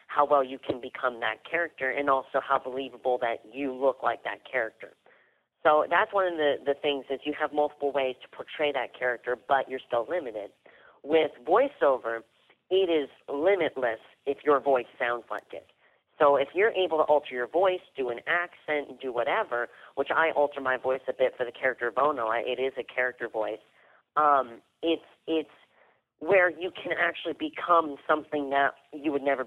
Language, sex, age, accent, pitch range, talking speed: English, female, 30-49, American, 125-150 Hz, 185 wpm